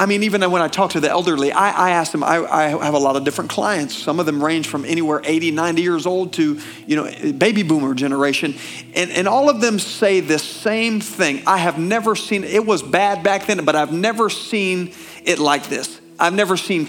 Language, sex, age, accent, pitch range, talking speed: English, male, 40-59, American, 160-220 Hz, 230 wpm